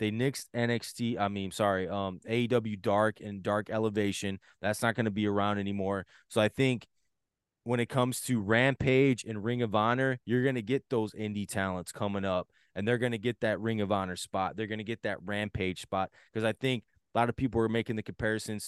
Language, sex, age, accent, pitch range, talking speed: English, male, 20-39, American, 105-125 Hz, 220 wpm